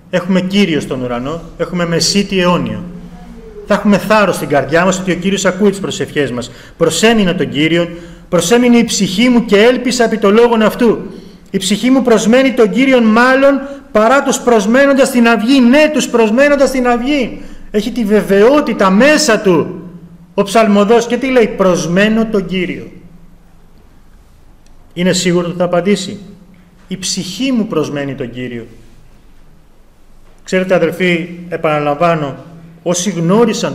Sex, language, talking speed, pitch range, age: male, Greek, 140 wpm, 165-215 Hz, 30-49